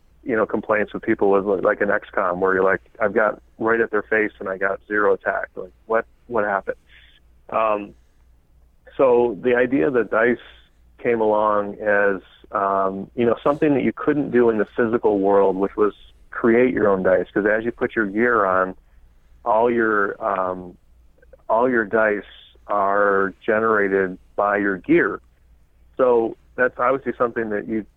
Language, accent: English, American